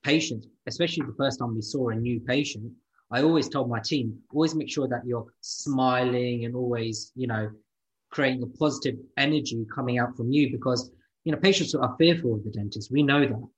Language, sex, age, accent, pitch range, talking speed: English, male, 20-39, British, 120-140 Hz, 200 wpm